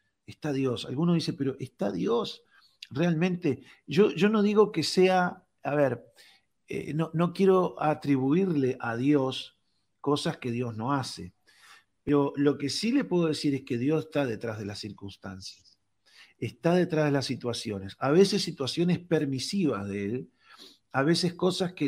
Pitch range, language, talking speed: 125-165 Hz, Spanish, 160 wpm